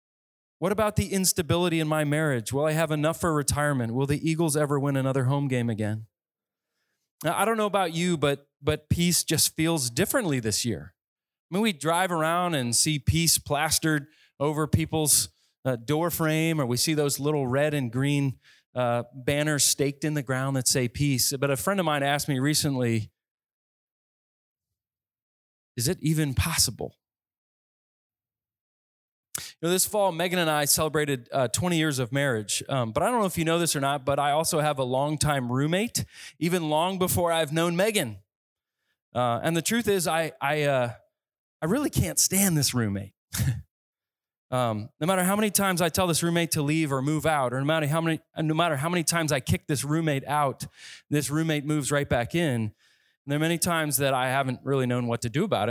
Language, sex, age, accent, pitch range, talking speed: English, male, 30-49, American, 130-165 Hz, 190 wpm